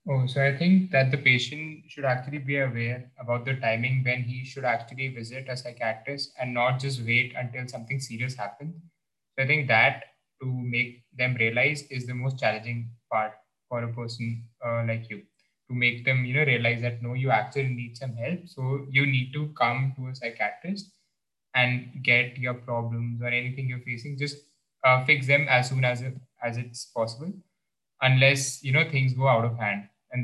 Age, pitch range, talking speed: 20-39, 120-140 Hz, 190 wpm